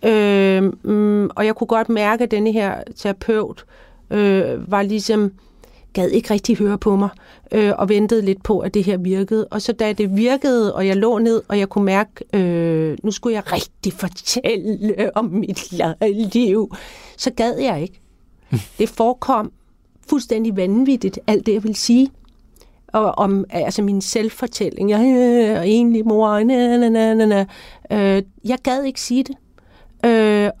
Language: Danish